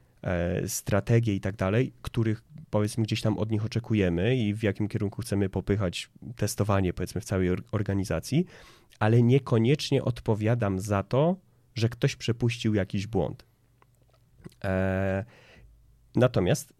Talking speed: 120 wpm